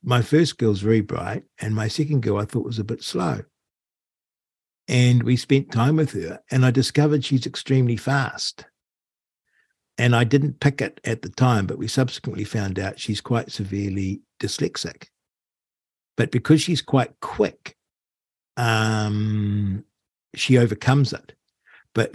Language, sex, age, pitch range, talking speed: English, male, 60-79, 100-125 Hz, 145 wpm